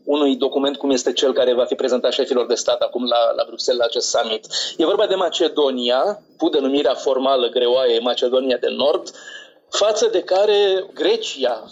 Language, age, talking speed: Romanian, 30-49, 175 wpm